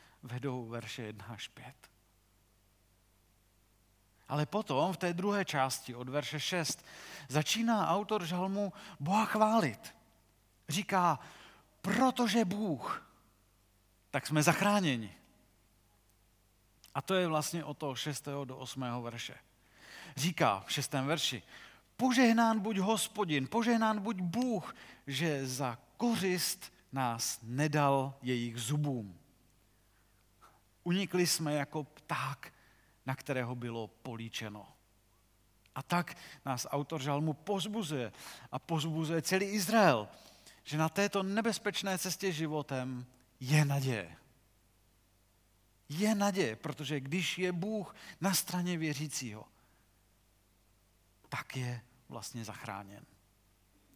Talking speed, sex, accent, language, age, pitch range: 100 wpm, male, native, Czech, 40-59, 110-175 Hz